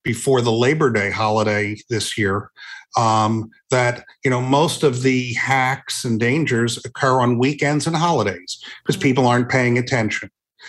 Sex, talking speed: male, 150 wpm